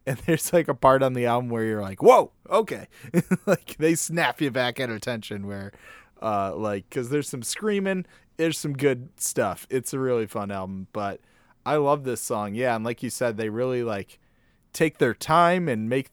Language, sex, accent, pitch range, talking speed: English, male, American, 110-145 Hz, 200 wpm